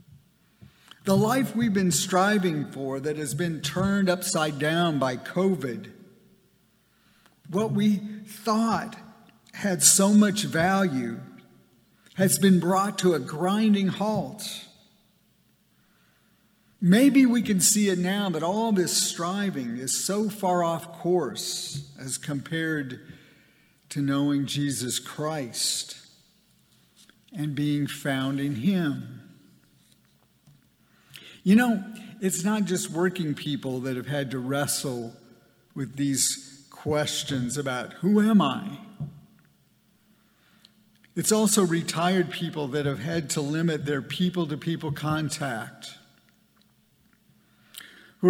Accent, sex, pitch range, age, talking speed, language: American, male, 145-190 Hz, 50-69, 105 wpm, English